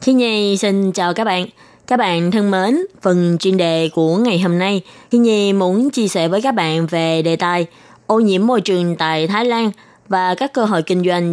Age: 20-39